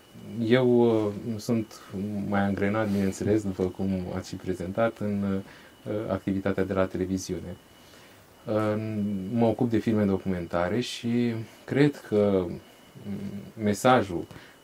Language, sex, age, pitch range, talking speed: Romanian, male, 30-49, 95-115 Hz, 100 wpm